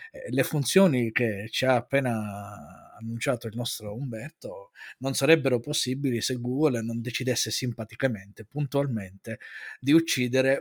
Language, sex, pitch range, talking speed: Italian, male, 110-145 Hz, 120 wpm